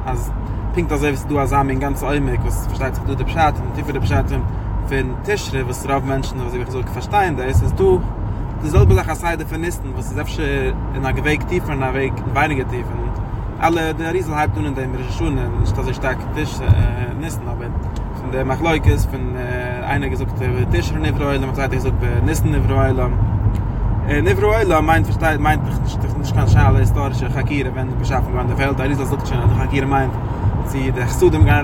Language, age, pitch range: English, 20-39, 105-135 Hz